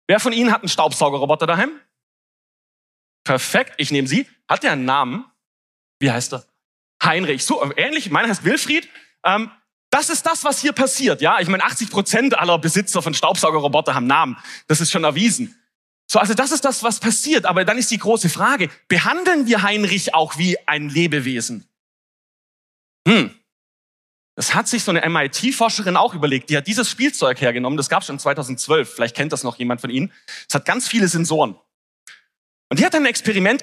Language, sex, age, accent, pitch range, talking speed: German, male, 30-49, German, 155-235 Hz, 180 wpm